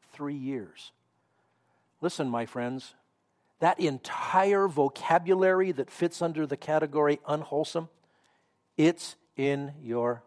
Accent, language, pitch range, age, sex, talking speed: American, English, 125-160 Hz, 50-69, male, 100 wpm